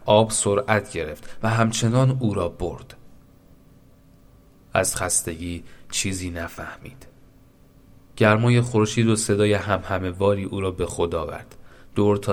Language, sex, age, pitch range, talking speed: Persian, male, 30-49, 90-110 Hz, 120 wpm